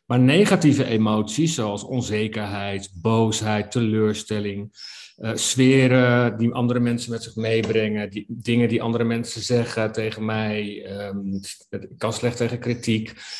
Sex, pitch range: male, 110-125 Hz